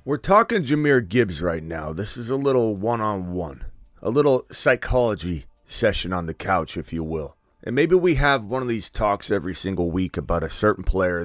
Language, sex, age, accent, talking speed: English, male, 30-49, American, 190 wpm